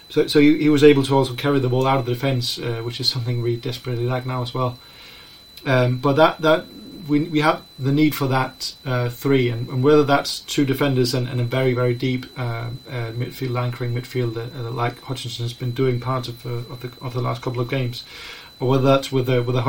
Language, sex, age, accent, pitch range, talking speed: English, male, 30-49, British, 125-135 Hz, 235 wpm